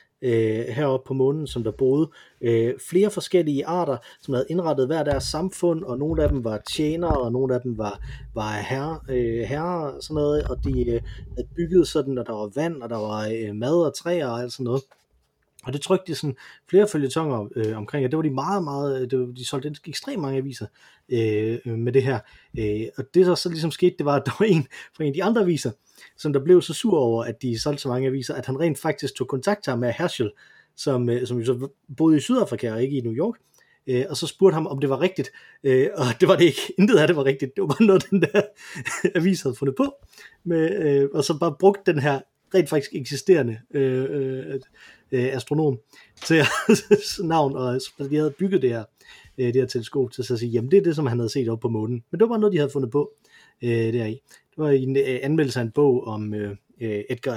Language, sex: Danish, male